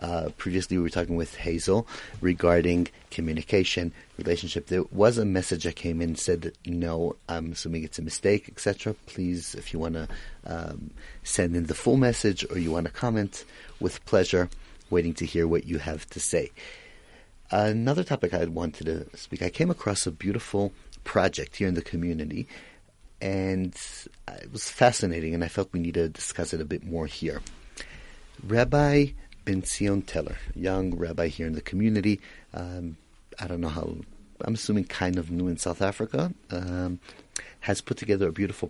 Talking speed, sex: 170 wpm, male